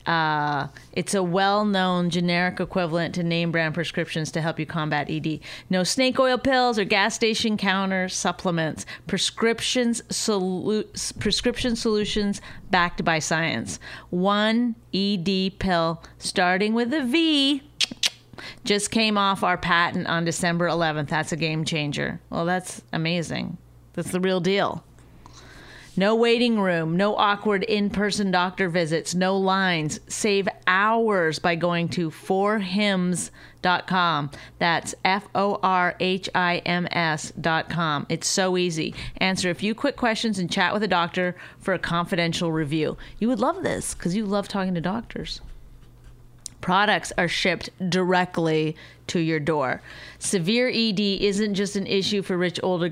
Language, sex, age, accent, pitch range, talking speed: English, female, 30-49, American, 170-205 Hz, 135 wpm